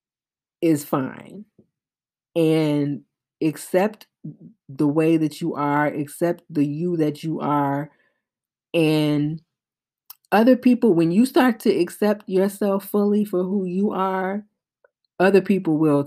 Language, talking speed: English, 120 wpm